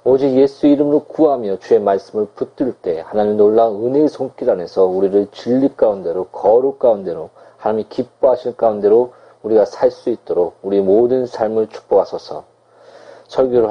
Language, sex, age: Korean, male, 40-59